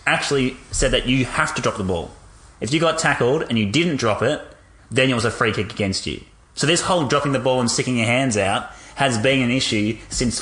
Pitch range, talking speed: 100-130 Hz, 240 wpm